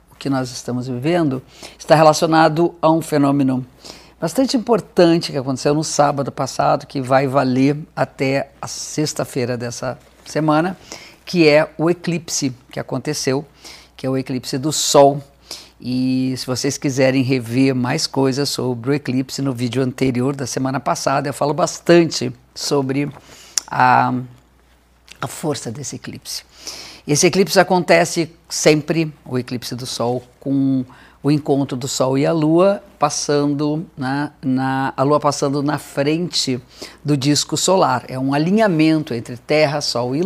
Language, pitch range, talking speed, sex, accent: Portuguese, 130-160 Hz, 140 wpm, female, Brazilian